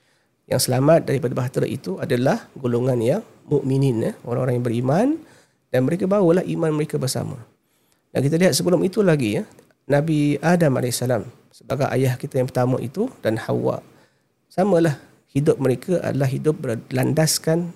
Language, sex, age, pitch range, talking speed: Malay, male, 40-59, 130-160 Hz, 150 wpm